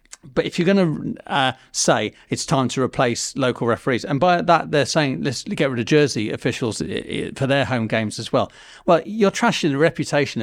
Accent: British